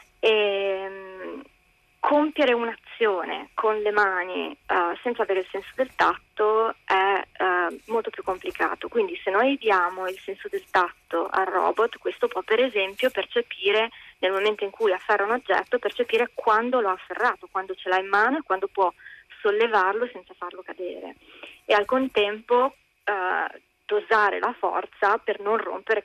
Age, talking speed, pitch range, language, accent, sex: 20-39, 145 wpm, 190-260 Hz, Italian, native, female